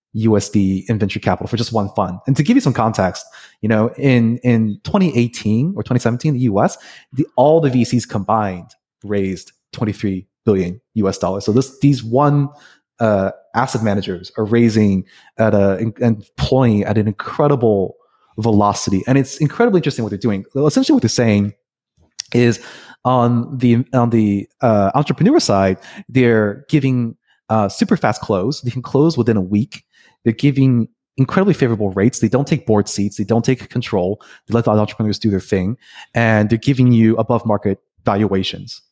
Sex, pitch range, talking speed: male, 105-130 Hz, 170 wpm